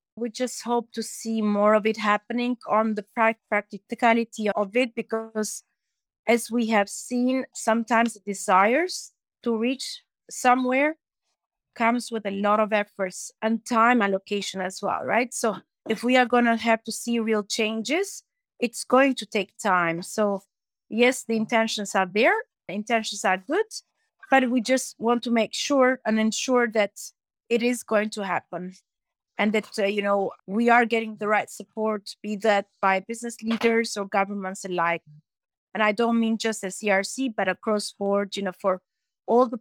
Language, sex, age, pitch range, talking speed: English, female, 30-49, 200-235 Hz, 170 wpm